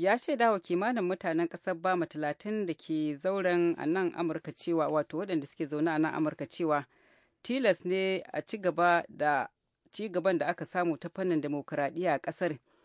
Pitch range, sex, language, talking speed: 155-180 Hz, female, English, 155 wpm